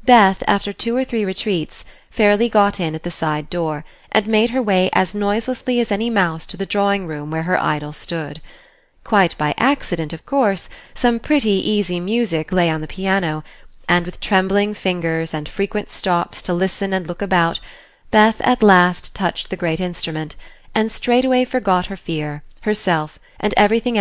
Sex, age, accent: female, 30-49, American